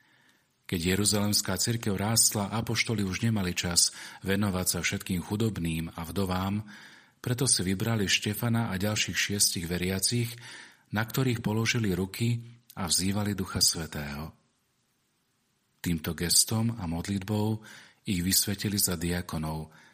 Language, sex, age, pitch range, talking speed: Slovak, male, 40-59, 90-105 Hz, 115 wpm